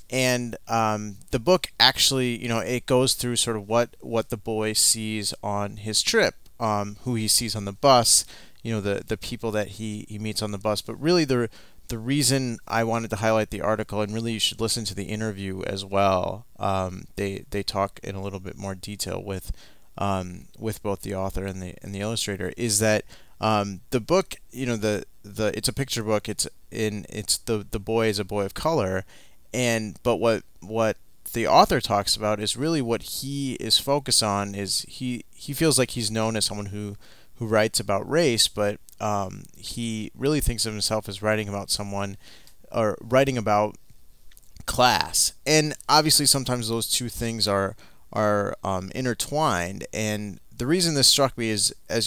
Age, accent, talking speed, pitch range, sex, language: 30-49, American, 190 wpm, 100-120 Hz, male, English